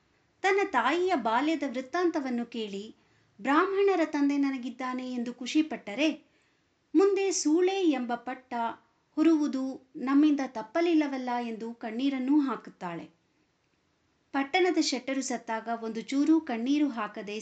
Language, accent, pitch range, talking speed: Kannada, native, 230-300 Hz, 95 wpm